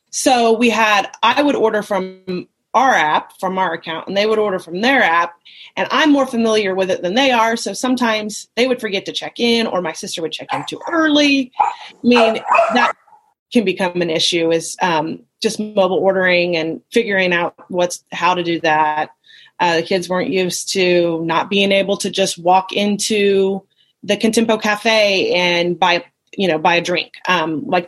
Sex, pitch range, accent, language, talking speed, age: female, 175-225 Hz, American, English, 190 wpm, 30-49